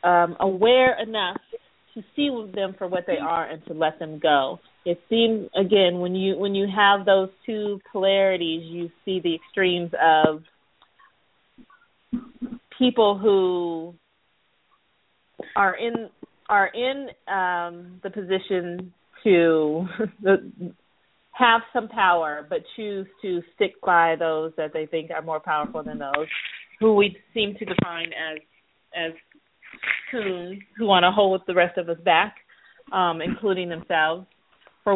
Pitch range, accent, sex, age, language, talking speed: 170-210 Hz, American, female, 30-49, English, 135 wpm